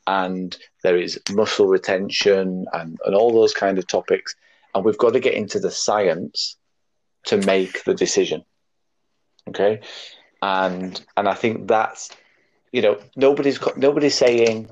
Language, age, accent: English, 30-49, British